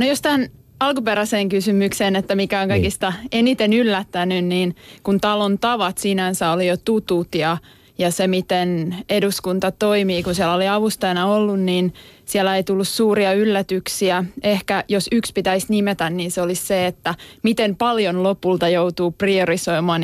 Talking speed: 155 wpm